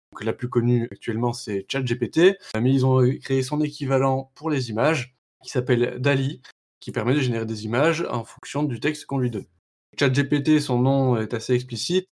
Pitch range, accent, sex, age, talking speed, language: 120-145 Hz, French, male, 20-39, 185 wpm, French